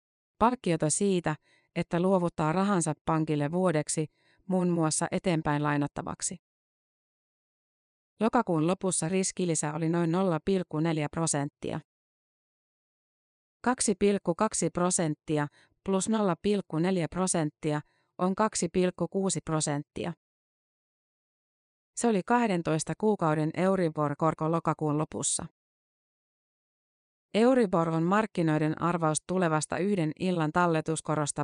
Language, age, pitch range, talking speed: Finnish, 30-49, 155-185 Hz, 80 wpm